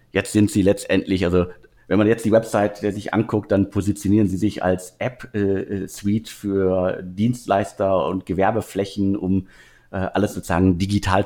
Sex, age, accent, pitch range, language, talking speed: male, 50-69, German, 90-110 Hz, German, 145 wpm